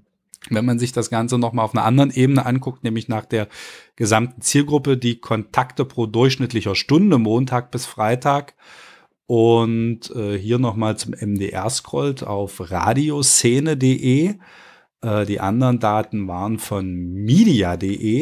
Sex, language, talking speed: male, German, 130 wpm